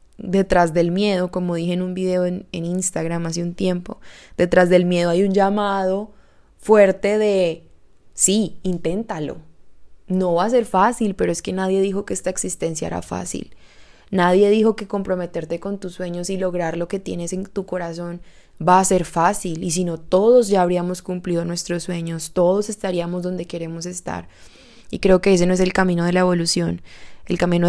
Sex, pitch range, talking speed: female, 175-195 Hz, 185 wpm